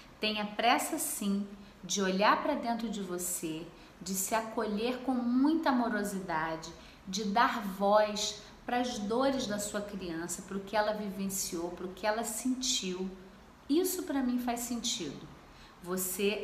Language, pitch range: Portuguese, 195-250 Hz